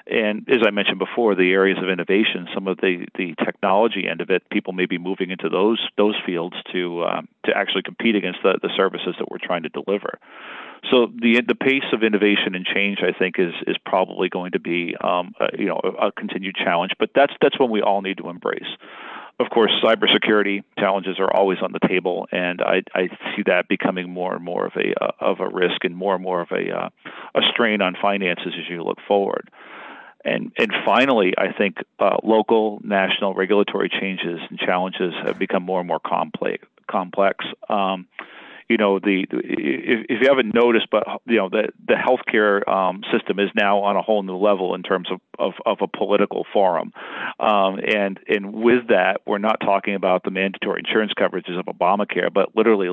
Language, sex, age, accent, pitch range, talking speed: English, male, 40-59, American, 95-105 Hz, 205 wpm